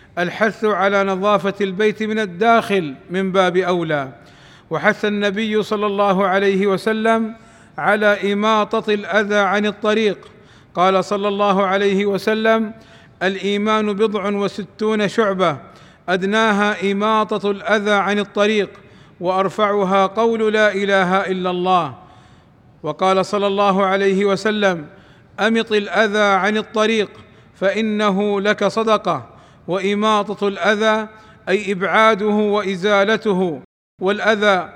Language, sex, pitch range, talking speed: Arabic, male, 190-215 Hz, 100 wpm